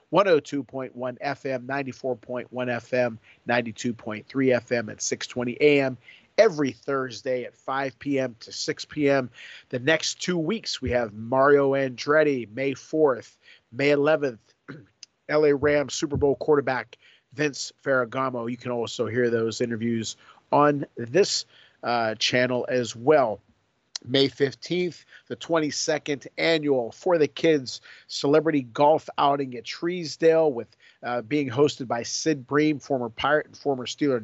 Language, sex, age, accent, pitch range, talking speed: English, male, 40-59, American, 120-145 Hz, 125 wpm